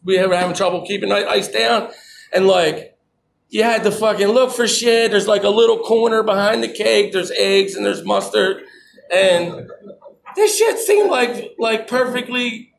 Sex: male